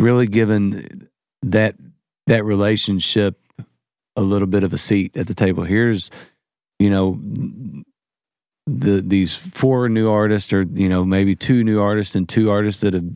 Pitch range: 95-110 Hz